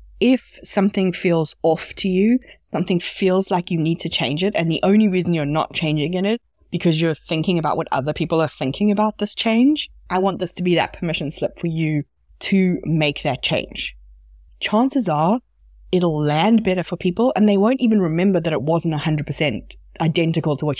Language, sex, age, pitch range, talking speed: English, female, 20-39, 130-180 Hz, 195 wpm